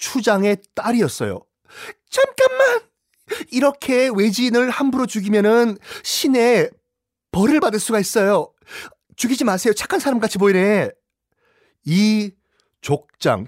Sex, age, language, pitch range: male, 30-49, Korean, 135-210 Hz